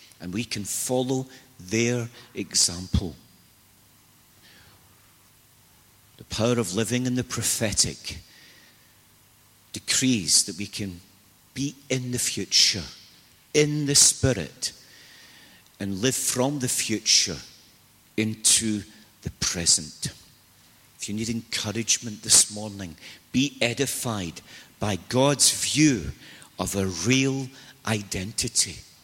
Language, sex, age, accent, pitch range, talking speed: English, male, 50-69, British, 105-135 Hz, 95 wpm